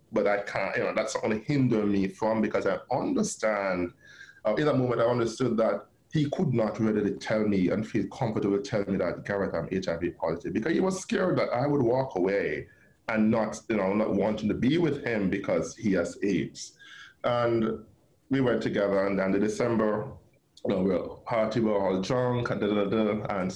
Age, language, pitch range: 20-39, English, 100-125 Hz